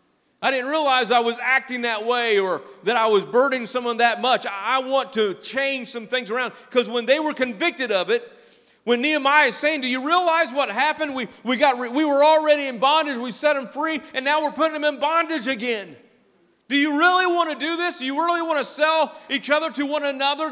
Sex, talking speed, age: male, 220 wpm, 40-59